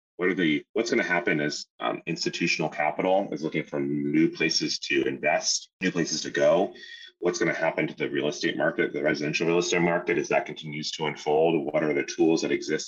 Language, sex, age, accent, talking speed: English, male, 30-49, American, 220 wpm